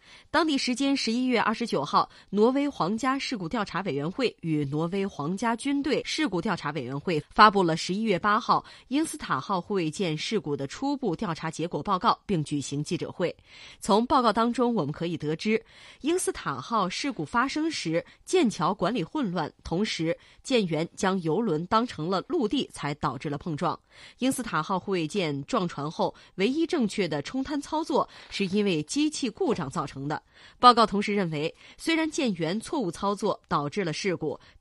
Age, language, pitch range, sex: 20-39, Chinese, 160-240 Hz, female